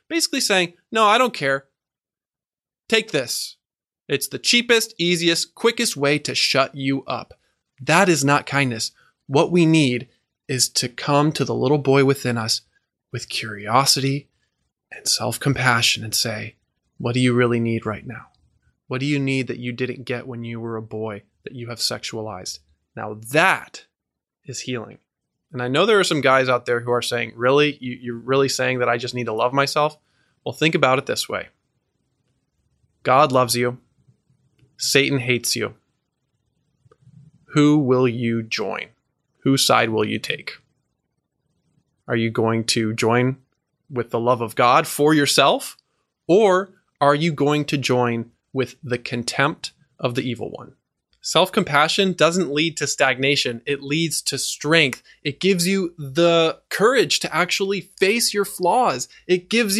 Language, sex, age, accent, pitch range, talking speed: English, male, 20-39, American, 120-155 Hz, 160 wpm